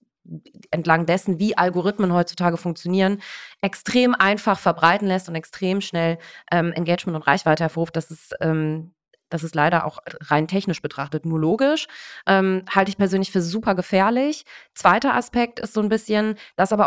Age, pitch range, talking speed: 30-49, 160-195 Hz, 160 wpm